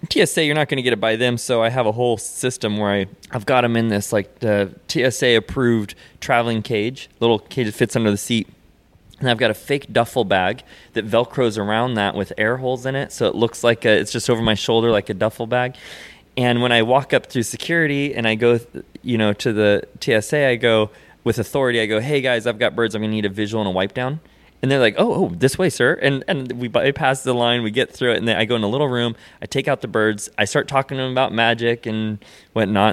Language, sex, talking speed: English, male, 255 wpm